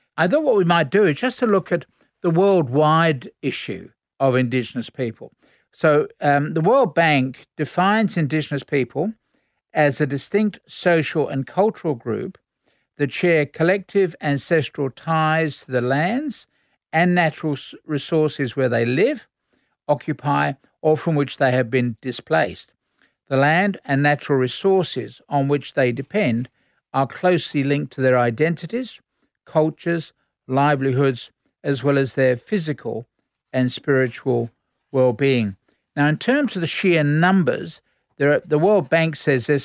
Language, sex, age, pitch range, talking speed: English, male, 60-79, 135-175 Hz, 140 wpm